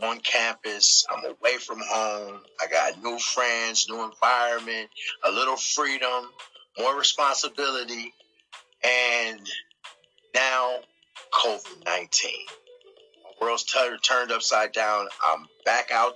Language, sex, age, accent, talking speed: English, male, 30-49, American, 100 wpm